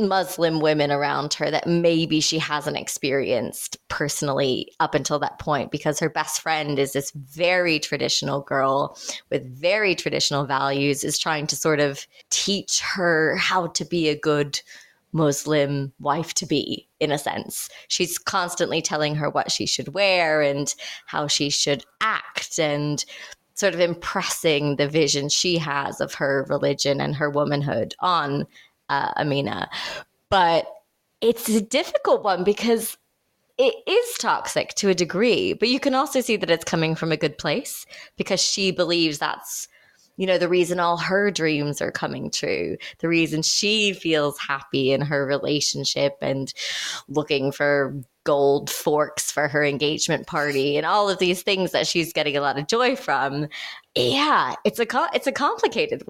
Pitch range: 145-185 Hz